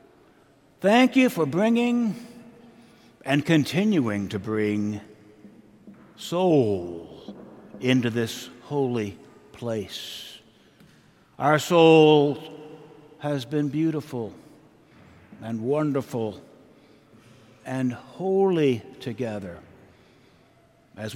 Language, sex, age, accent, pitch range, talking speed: English, male, 60-79, American, 115-150 Hz, 70 wpm